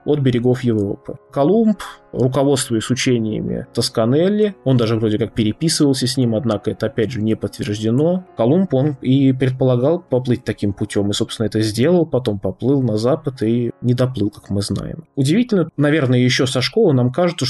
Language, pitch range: Russian, 115-135 Hz